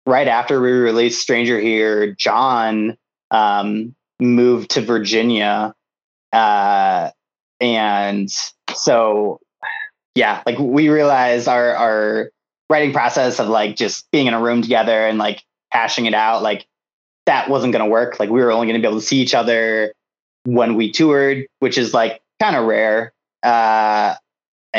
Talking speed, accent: 150 wpm, American